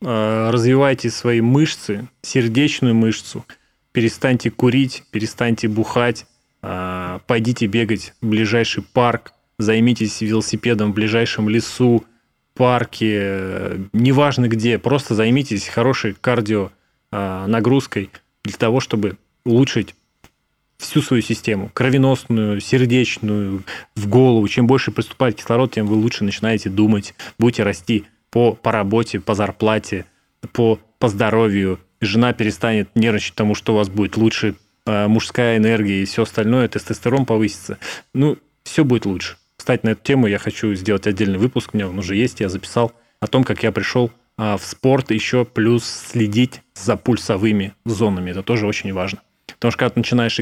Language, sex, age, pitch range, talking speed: Russian, male, 20-39, 105-120 Hz, 135 wpm